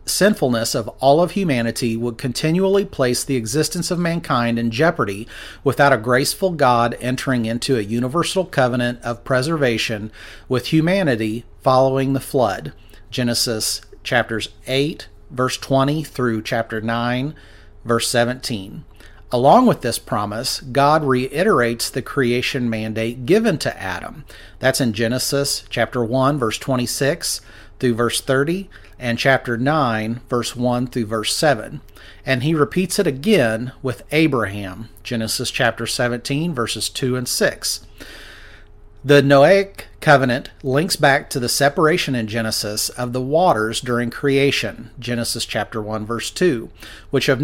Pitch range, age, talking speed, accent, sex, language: 115-140 Hz, 40-59, 135 wpm, American, male, English